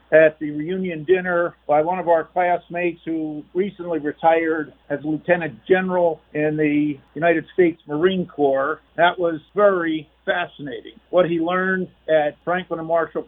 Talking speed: 145 wpm